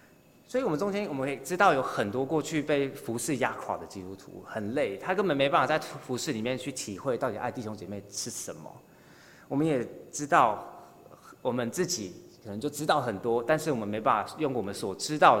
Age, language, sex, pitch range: 20-39, Chinese, male, 105-140 Hz